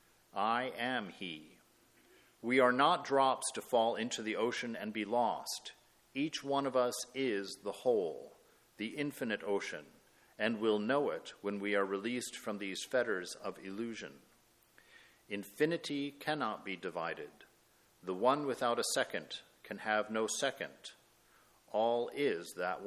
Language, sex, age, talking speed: English, male, 50-69, 140 wpm